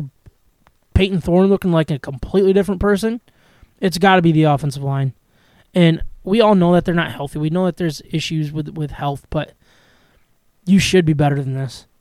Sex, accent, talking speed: male, American, 190 wpm